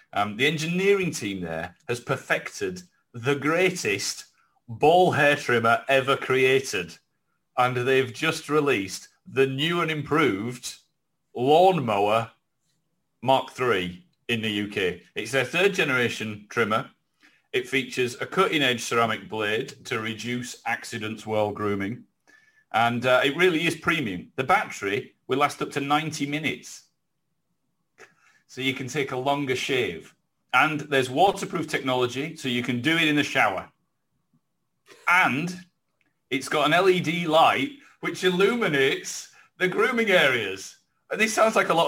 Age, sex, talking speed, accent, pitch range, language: 40-59, male, 135 wpm, British, 125-175 Hz, English